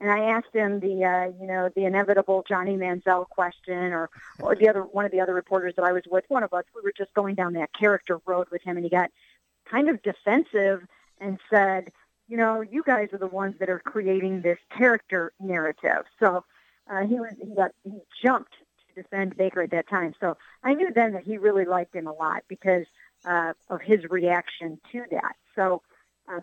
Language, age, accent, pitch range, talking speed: English, 50-69, American, 180-215 Hz, 215 wpm